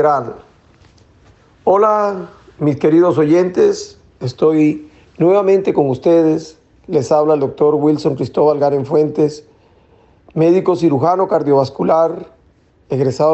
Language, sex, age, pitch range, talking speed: Spanish, male, 40-59, 140-165 Hz, 90 wpm